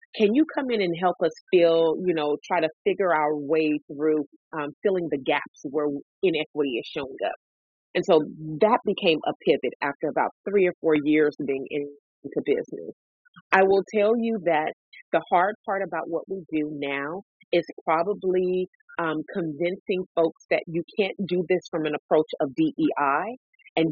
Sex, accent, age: female, American, 30-49